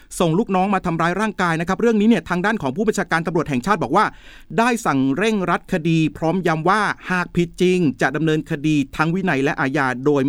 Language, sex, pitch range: Thai, male, 145-190 Hz